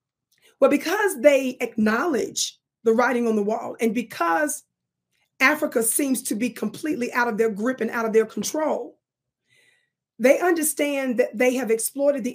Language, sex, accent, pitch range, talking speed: English, female, American, 225-275 Hz, 155 wpm